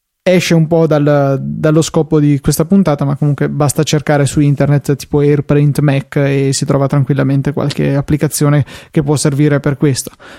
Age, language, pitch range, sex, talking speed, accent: 20-39, Italian, 140-160 Hz, male, 160 wpm, native